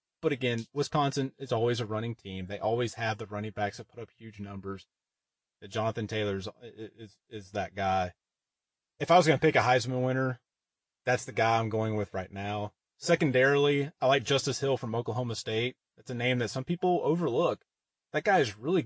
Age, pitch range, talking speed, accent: 30-49, 105-135 Hz, 200 wpm, American